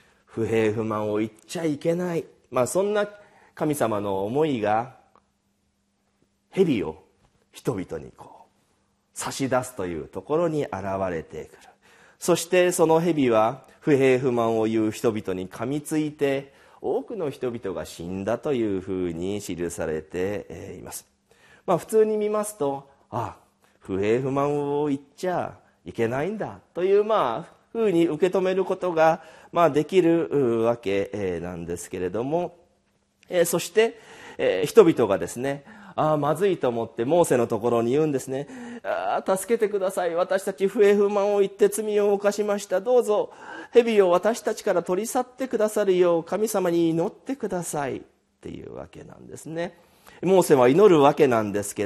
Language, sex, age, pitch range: Japanese, male, 40-59, 120-200 Hz